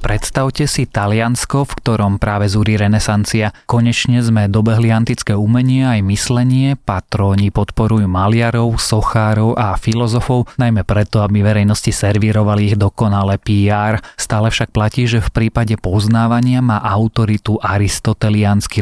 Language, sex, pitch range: Slovak, male, 105-115 Hz